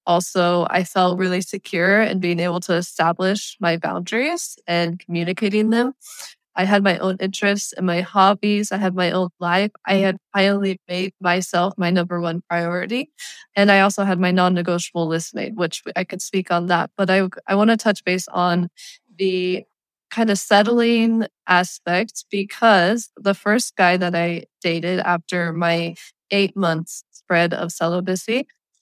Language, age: English, 20-39